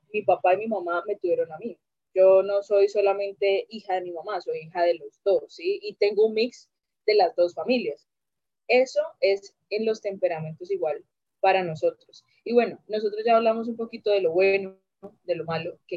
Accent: Colombian